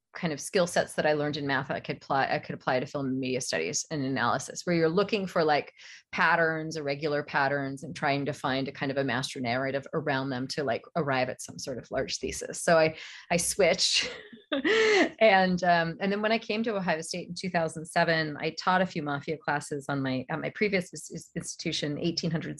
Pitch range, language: 150-180 Hz, English